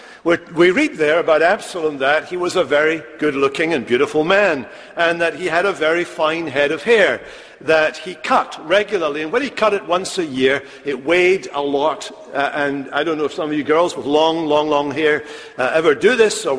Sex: male